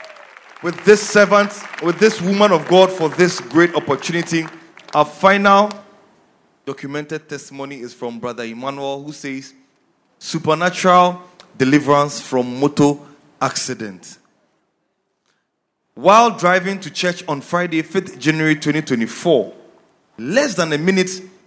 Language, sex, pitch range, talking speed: English, male, 140-185 Hz, 110 wpm